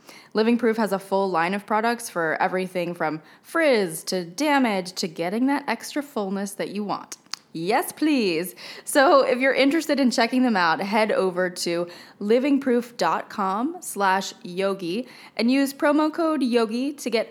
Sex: female